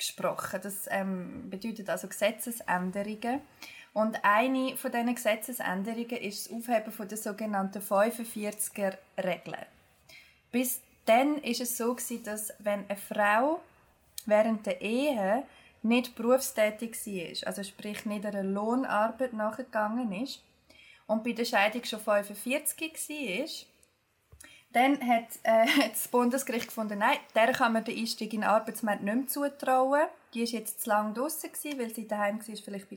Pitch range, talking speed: 205-250 Hz, 140 wpm